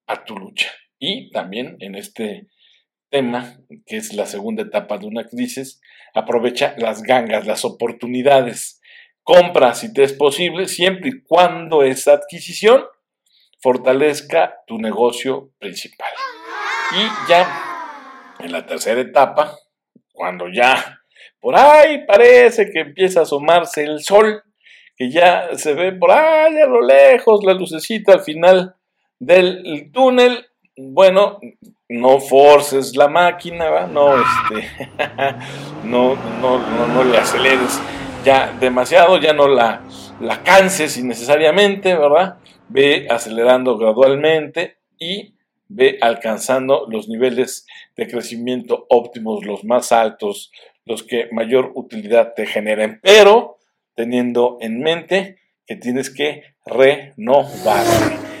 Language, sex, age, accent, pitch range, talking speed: Spanish, male, 50-69, Mexican, 125-190 Hz, 120 wpm